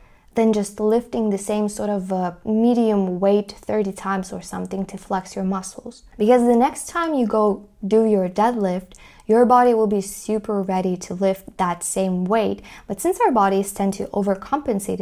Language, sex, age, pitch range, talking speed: English, female, 20-39, 195-230 Hz, 180 wpm